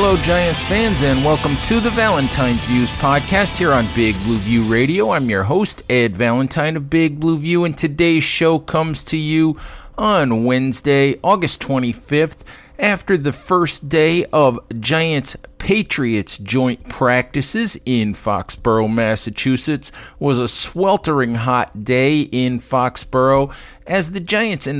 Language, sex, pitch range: English, male, 120-150 Hz